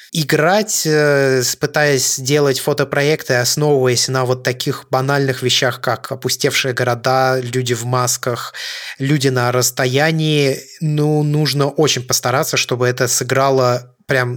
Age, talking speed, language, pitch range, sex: 20-39, 115 wpm, Russian, 125-150 Hz, male